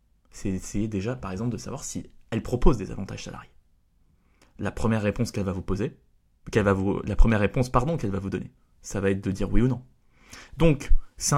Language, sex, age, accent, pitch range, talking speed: French, male, 20-39, French, 100-140 Hz, 160 wpm